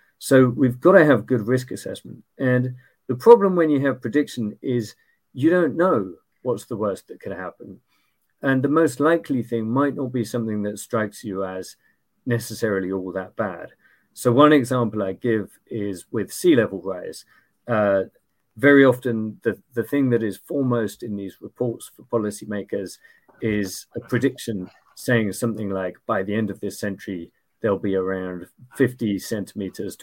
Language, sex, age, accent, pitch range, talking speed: English, male, 40-59, British, 105-135 Hz, 170 wpm